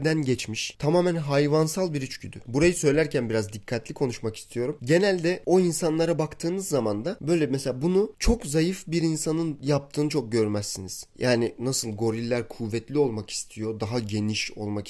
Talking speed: 150 wpm